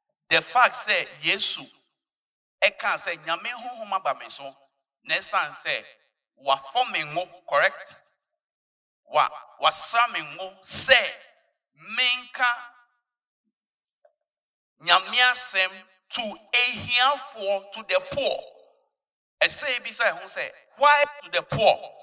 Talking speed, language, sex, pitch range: 100 wpm, English, male, 160-270 Hz